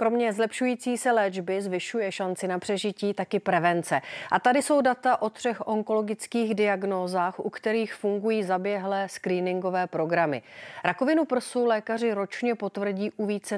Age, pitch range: 40-59, 180-220 Hz